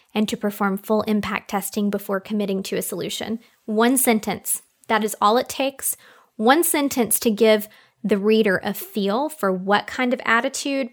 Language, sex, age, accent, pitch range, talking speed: English, female, 20-39, American, 205-255 Hz, 170 wpm